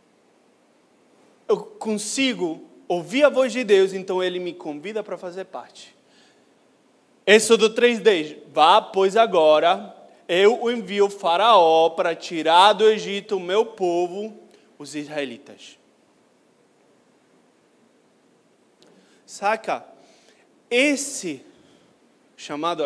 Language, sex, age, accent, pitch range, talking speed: Portuguese, male, 20-39, Brazilian, 160-230 Hz, 95 wpm